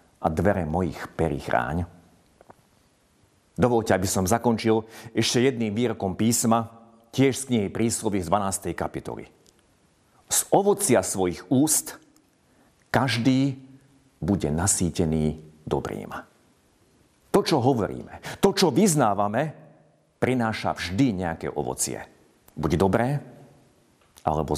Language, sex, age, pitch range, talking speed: Slovak, male, 50-69, 85-120 Hz, 100 wpm